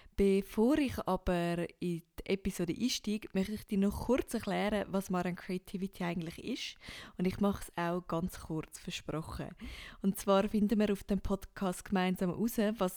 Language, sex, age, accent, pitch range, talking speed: English, female, 20-39, Swiss, 180-210 Hz, 165 wpm